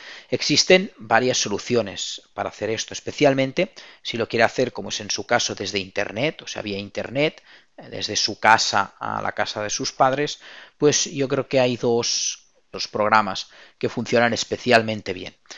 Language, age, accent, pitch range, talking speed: Spanish, 40-59, Spanish, 105-135 Hz, 165 wpm